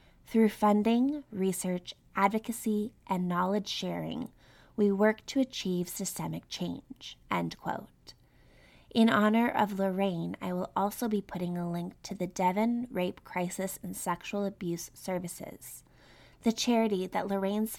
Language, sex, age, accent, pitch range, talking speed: English, female, 20-39, American, 175-210 Hz, 130 wpm